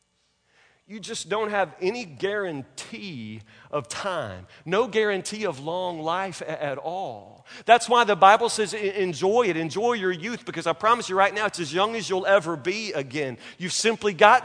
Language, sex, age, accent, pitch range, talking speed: English, male, 40-59, American, 195-250 Hz, 175 wpm